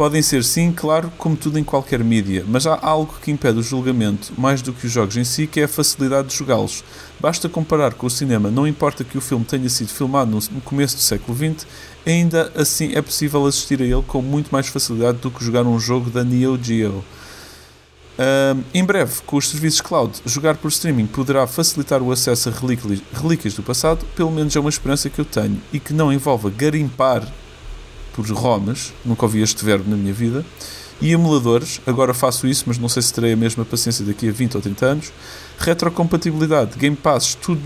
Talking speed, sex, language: 205 wpm, male, Portuguese